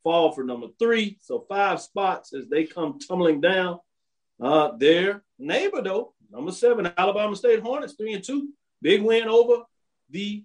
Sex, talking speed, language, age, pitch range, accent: male, 160 wpm, English, 40-59, 165-210 Hz, American